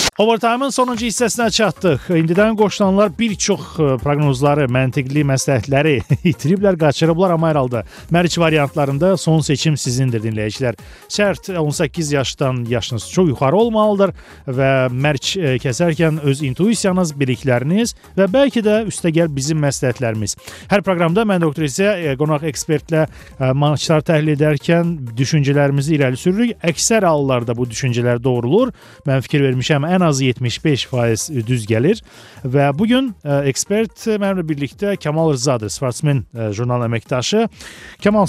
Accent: Turkish